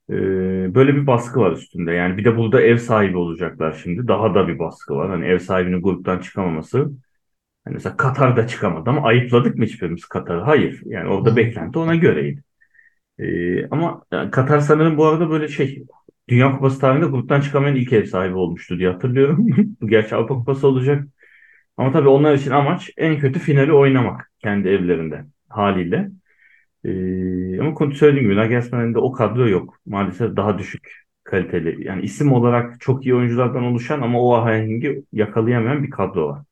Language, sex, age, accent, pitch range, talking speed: Turkish, male, 30-49, native, 100-140 Hz, 165 wpm